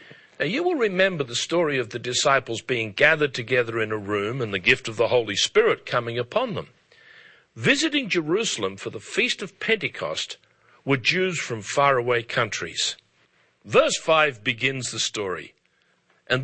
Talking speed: 155 wpm